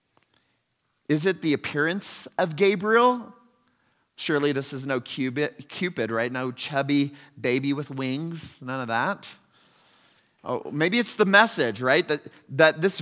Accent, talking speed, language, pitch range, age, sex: American, 140 wpm, English, 140-215 Hz, 30-49, male